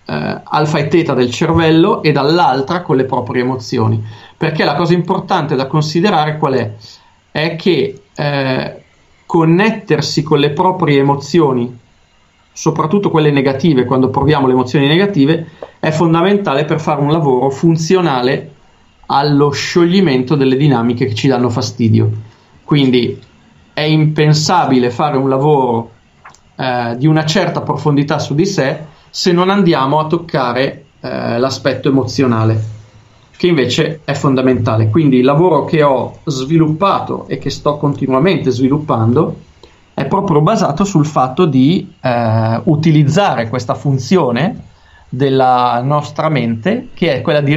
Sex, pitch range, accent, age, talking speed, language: male, 130-165 Hz, native, 40-59, 130 wpm, Italian